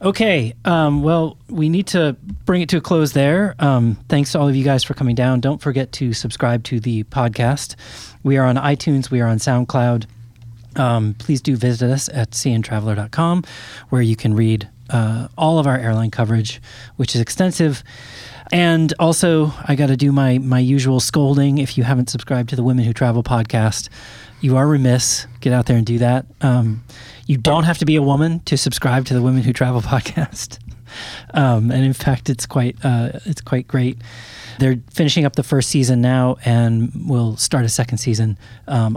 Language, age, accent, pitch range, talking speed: English, 30-49, American, 120-145 Hz, 190 wpm